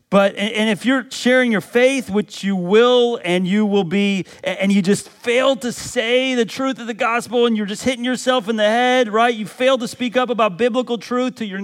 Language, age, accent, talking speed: English, 40-59, American, 225 wpm